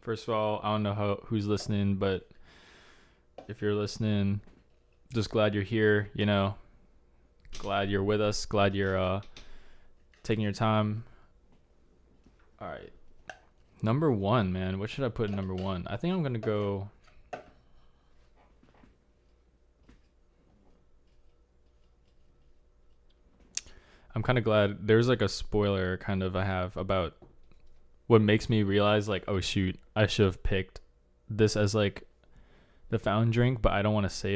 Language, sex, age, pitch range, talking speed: English, male, 20-39, 70-105 Hz, 145 wpm